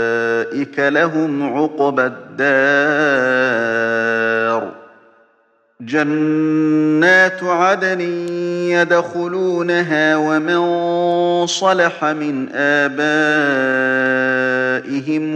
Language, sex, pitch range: Arabic, male, 140-165 Hz